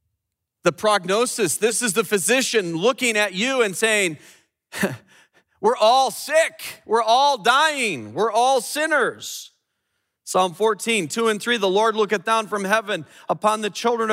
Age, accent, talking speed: 40-59, American, 145 wpm